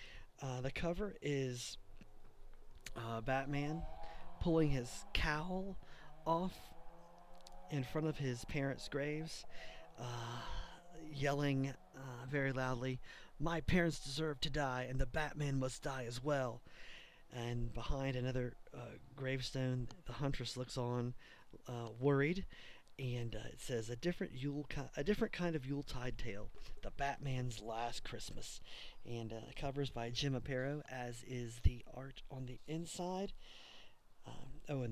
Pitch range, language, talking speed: 120-140 Hz, English, 135 wpm